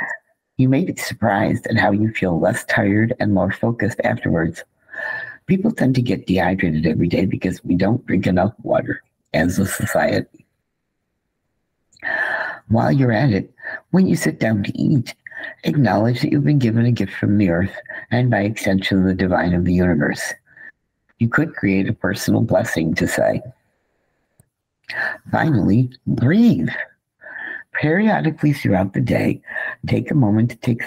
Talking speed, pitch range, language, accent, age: 150 wpm, 95-130 Hz, English, American, 60-79